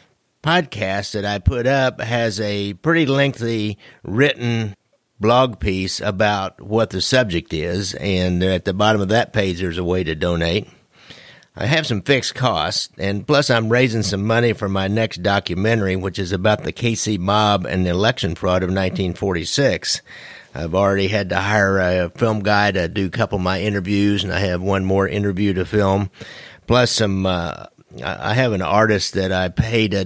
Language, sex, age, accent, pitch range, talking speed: English, male, 50-69, American, 90-115 Hz, 180 wpm